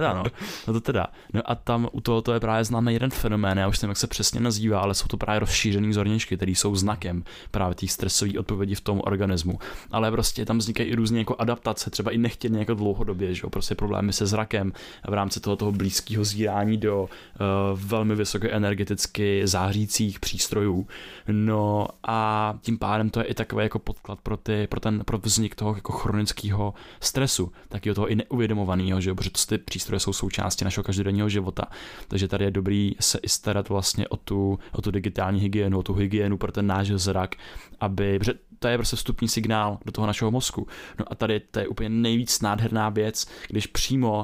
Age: 20-39